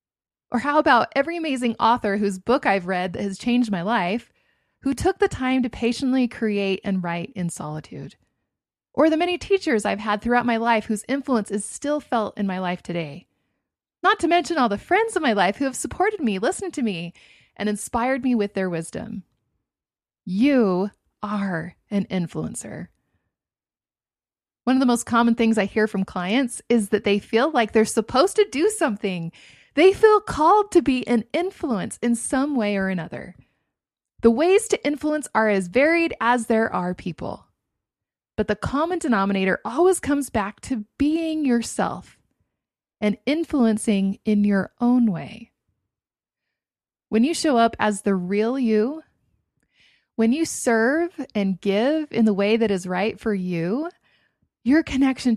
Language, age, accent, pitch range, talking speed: English, 20-39, American, 200-280 Hz, 165 wpm